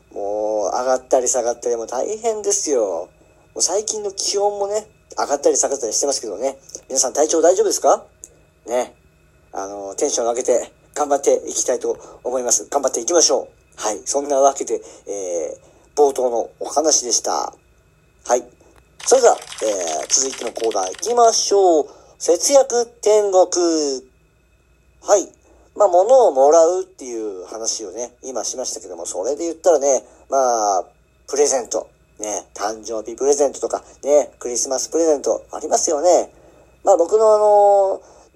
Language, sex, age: Japanese, male, 40-59